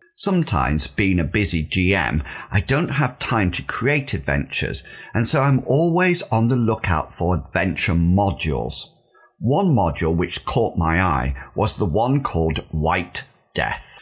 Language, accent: English, British